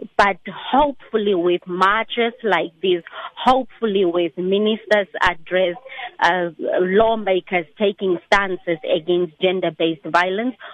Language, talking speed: English, 95 wpm